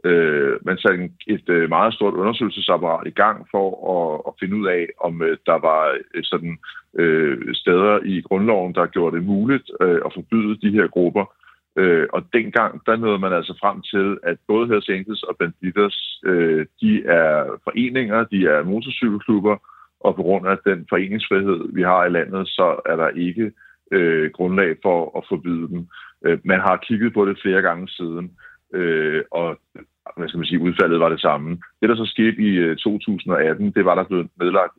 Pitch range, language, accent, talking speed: 90-110 Hz, Danish, native, 160 wpm